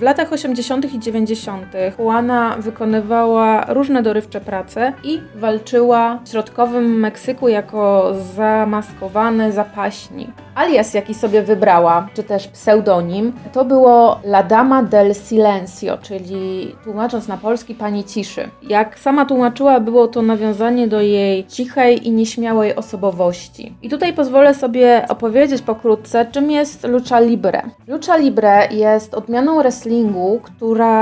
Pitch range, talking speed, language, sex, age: 215-245 Hz, 125 wpm, Polish, female, 20-39